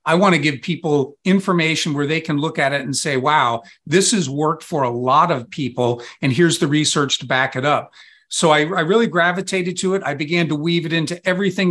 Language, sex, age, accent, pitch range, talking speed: English, male, 50-69, American, 140-170 Hz, 230 wpm